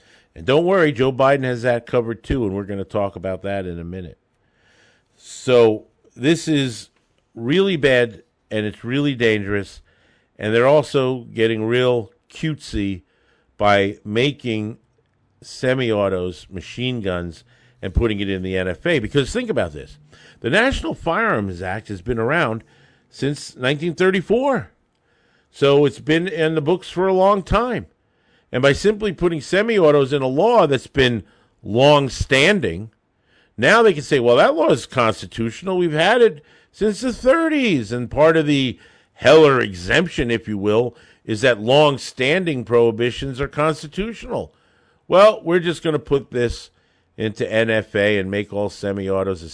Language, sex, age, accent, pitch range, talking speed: English, male, 50-69, American, 100-145 Hz, 150 wpm